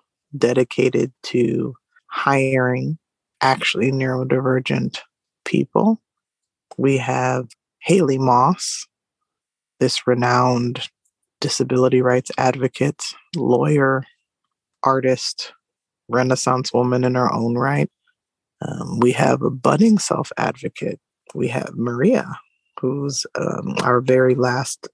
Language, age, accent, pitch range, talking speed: English, 20-39, American, 125-140 Hz, 90 wpm